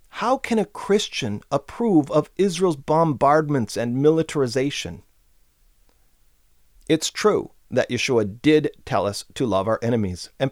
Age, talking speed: 40-59, 125 wpm